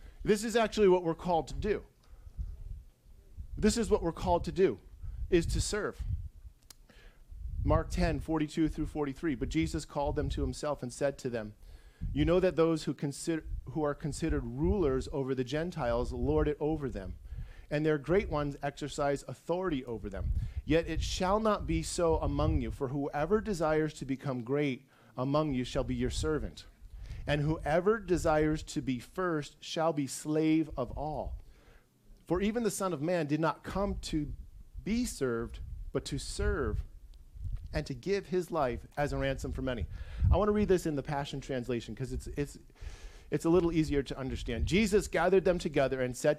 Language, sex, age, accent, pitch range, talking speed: English, male, 40-59, American, 125-165 Hz, 180 wpm